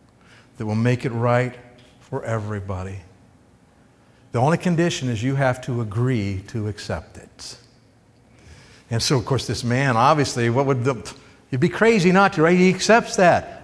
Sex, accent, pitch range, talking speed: male, American, 125-175 Hz, 165 wpm